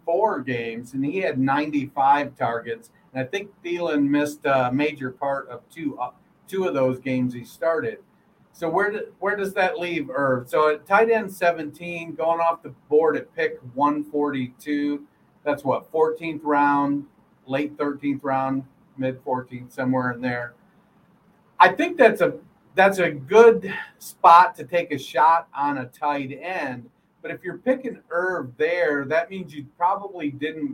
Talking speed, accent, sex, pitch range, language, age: 160 wpm, American, male, 135-175 Hz, English, 50-69